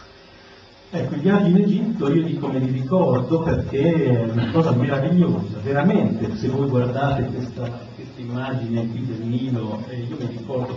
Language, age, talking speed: Italian, 50-69, 160 wpm